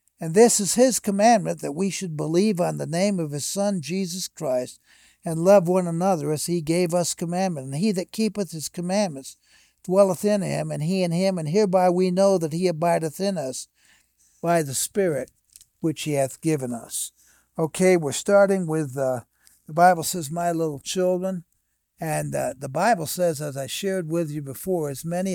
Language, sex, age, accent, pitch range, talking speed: English, male, 60-79, American, 150-185 Hz, 190 wpm